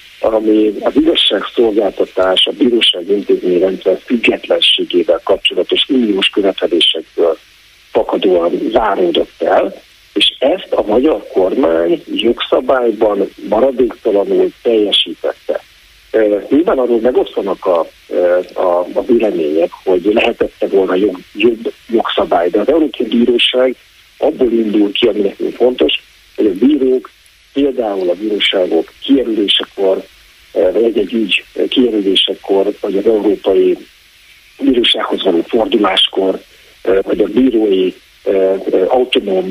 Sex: male